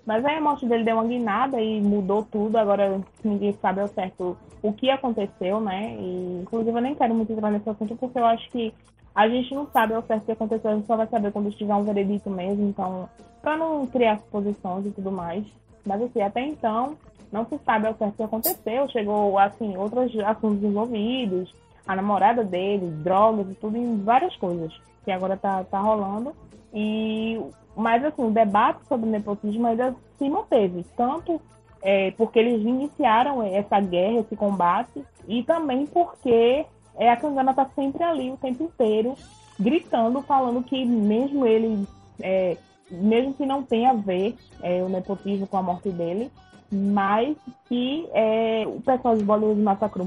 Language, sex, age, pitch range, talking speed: Portuguese, female, 20-39, 200-245 Hz, 180 wpm